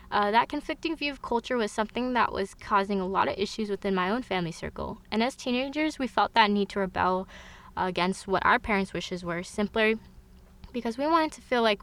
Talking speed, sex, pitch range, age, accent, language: 220 wpm, female, 180-230 Hz, 20-39, American, English